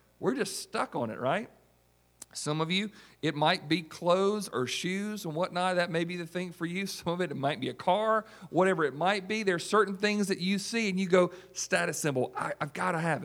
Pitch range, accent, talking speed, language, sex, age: 130-185 Hz, American, 240 wpm, English, male, 40-59